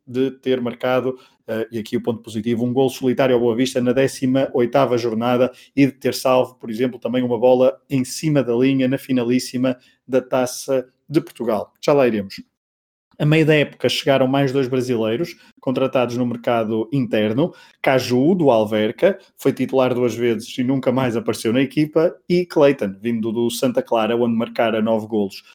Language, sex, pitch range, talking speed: Portuguese, male, 120-130 Hz, 175 wpm